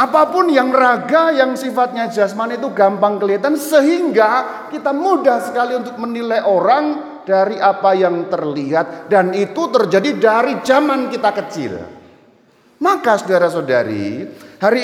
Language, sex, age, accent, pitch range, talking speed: Indonesian, male, 40-59, native, 185-265 Hz, 120 wpm